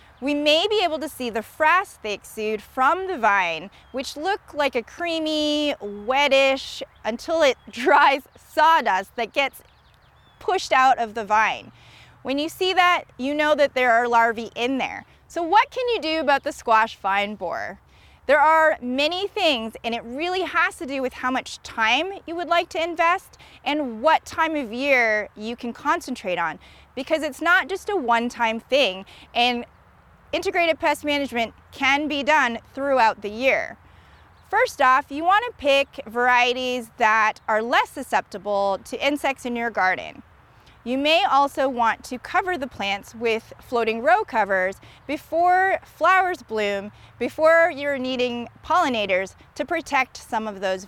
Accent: American